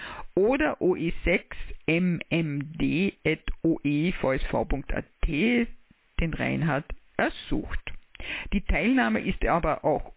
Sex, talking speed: female, 60 wpm